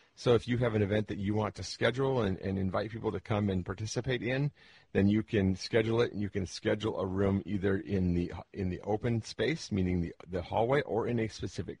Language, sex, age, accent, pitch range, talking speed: English, male, 40-59, American, 95-115 Hz, 235 wpm